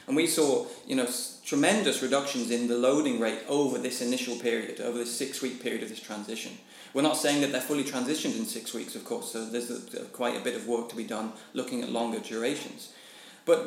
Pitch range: 120-145 Hz